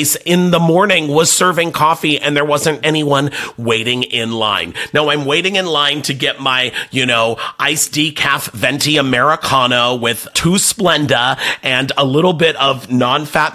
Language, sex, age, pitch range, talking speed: English, male, 30-49, 130-170 Hz, 160 wpm